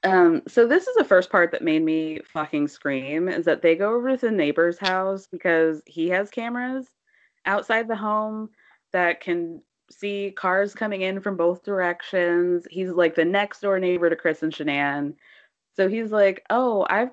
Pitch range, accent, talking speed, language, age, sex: 160-205 Hz, American, 180 wpm, English, 20-39, female